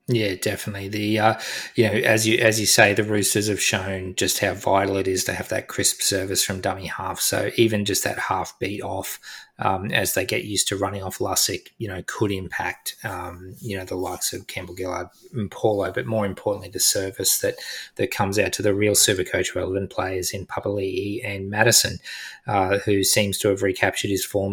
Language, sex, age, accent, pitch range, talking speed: English, male, 20-39, Australian, 95-105 Hz, 210 wpm